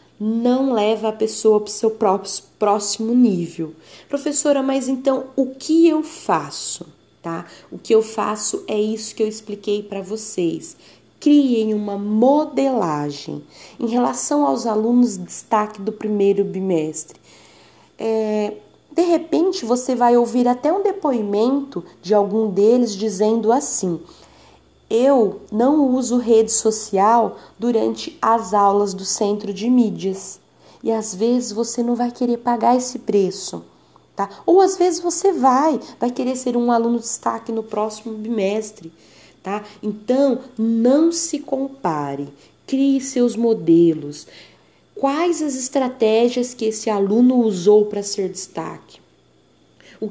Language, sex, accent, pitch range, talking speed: Portuguese, female, Brazilian, 205-255 Hz, 135 wpm